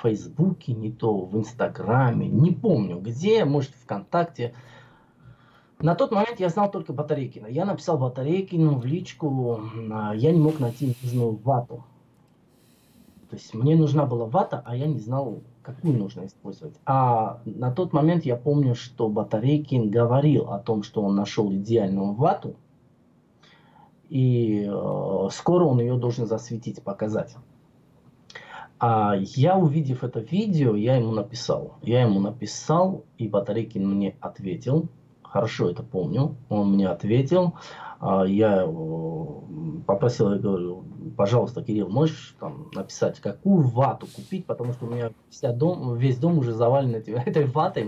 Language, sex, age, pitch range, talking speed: Russian, male, 20-39, 110-155 Hz, 135 wpm